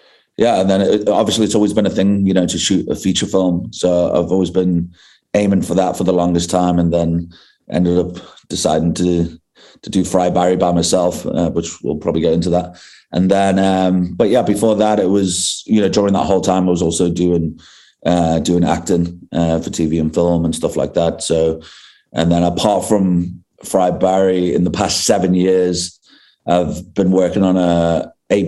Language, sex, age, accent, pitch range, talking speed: English, male, 30-49, British, 85-95 Hz, 200 wpm